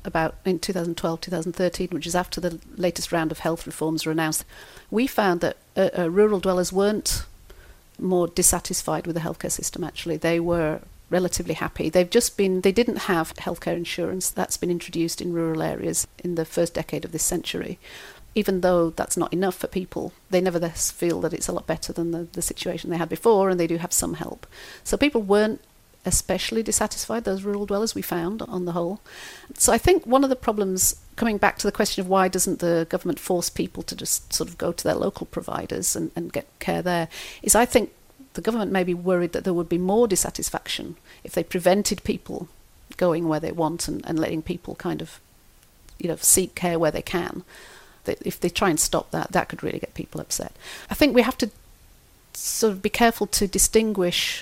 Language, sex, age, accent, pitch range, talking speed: English, female, 40-59, British, 170-205 Hz, 205 wpm